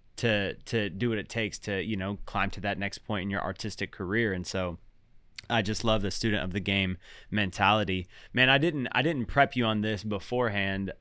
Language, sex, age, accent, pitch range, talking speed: English, male, 20-39, American, 95-115 Hz, 215 wpm